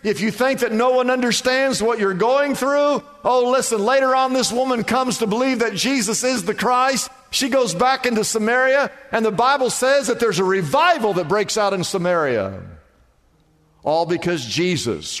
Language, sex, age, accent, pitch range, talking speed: English, male, 50-69, American, 125-195 Hz, 180 wpm